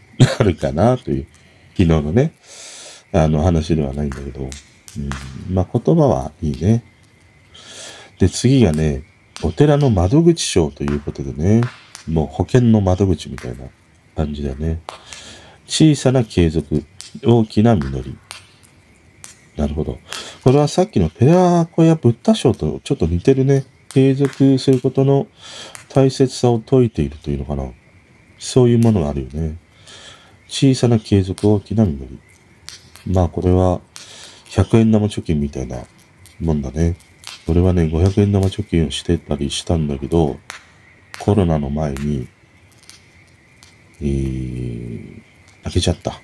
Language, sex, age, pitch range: Japanese, male, 40-59, 80-120 Hz